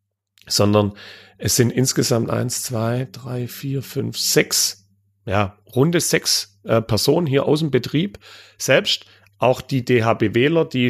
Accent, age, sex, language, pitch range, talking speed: German, 40-59, male, German, 105-140 Hz, 130 wpm